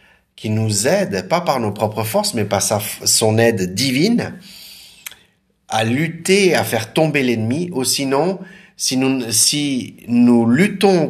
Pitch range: 115-155 Hz